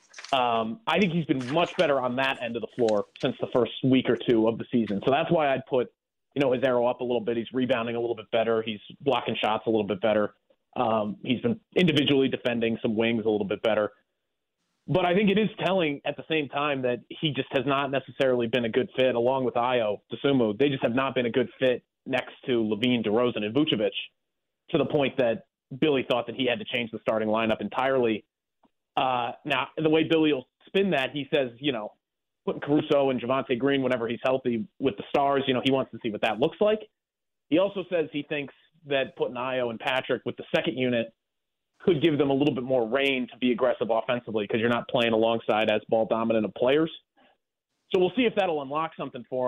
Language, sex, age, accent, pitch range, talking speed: English, male, 30-49, American, 115-145 Hz, 230 wpm